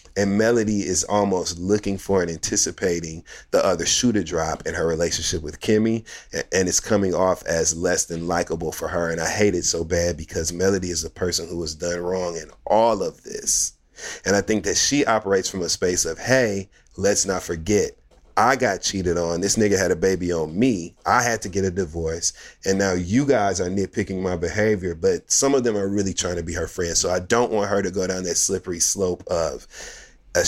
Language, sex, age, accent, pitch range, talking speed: English, male, 30-49, American, 90-110 Hz, 215 wpm